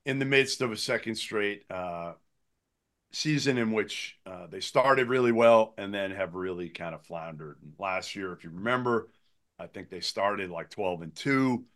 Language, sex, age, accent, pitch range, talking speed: English, male, 50-69, American, 95-130 Hz, 185 wpm